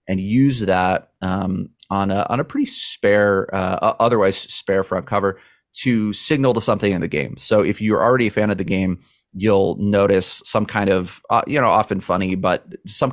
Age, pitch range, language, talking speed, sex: 30-49, 95-120 Hz, English, 195 wpm, male